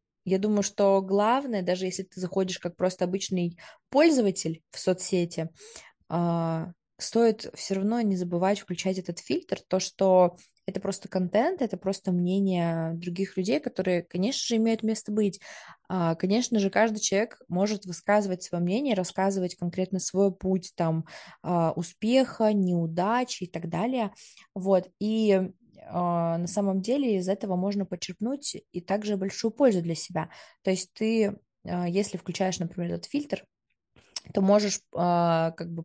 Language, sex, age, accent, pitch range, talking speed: Russian, female, 20-39, native, 180-210 Hz, 140 wpm